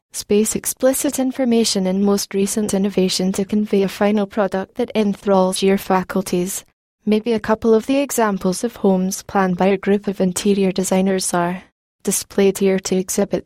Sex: female